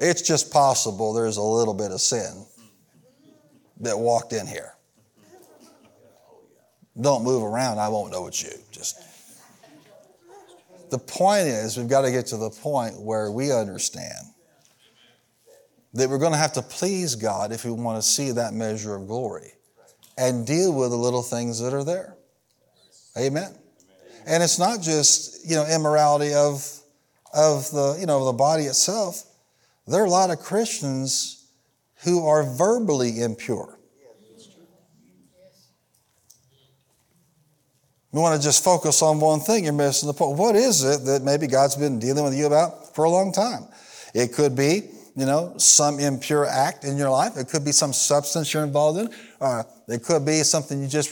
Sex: male